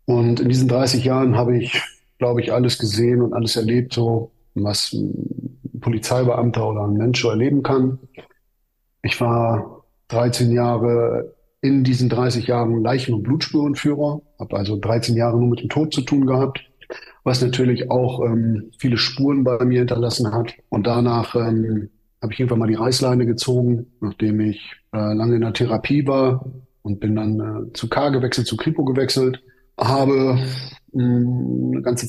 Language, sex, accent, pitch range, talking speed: German, male, German, 115-130 Hz, 165 wpm